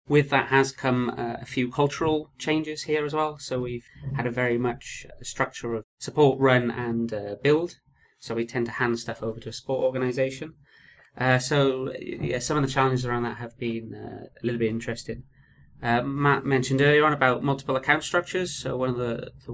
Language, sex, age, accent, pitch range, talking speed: English, male, 30-49, British, 115-135 Hz, 205 wpm